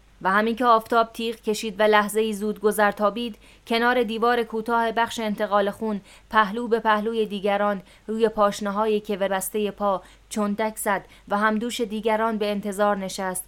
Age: 20-39